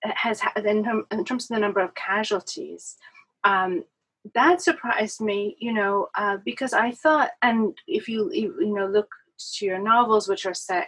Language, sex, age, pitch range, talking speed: English, female, 30-49, 200-260 Hz, 165 wpm